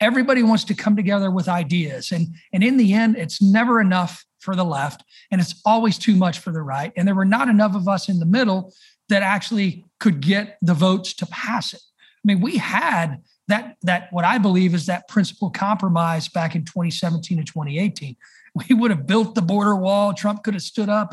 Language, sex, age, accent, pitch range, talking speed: English, male, 40-59, American, 180-220 Hz, 215 wpm